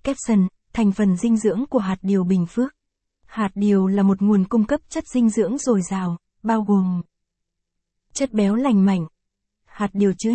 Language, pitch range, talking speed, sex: Vietnamese, 195-235 Hz, 180 wpm, female